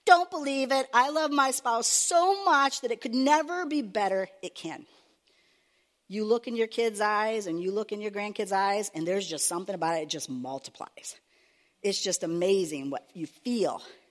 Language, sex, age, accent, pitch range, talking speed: English, female, 50-69, American, 190-260 Hz, 190 wpm